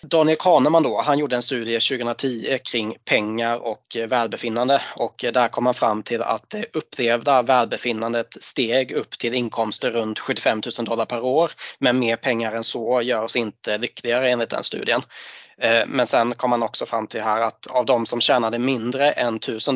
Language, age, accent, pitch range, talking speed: Swedish, 20-39, native, 115-135 Hz, 175 wpm